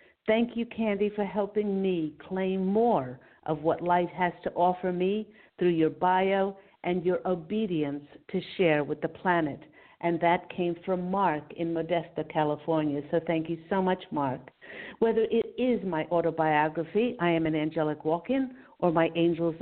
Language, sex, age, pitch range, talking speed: English, female, 50-69, 165-210 Hz, 160 wpm